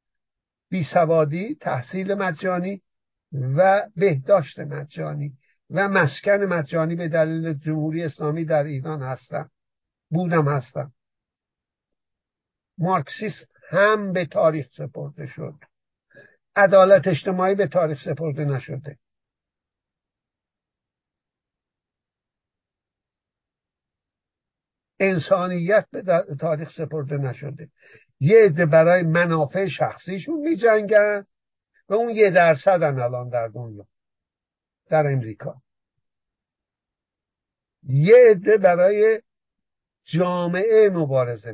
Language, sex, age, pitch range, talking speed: Persian, male, 60-79, 140-195 Hz, 80 wpm